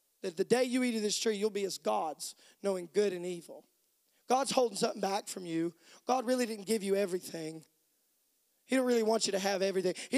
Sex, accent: male, American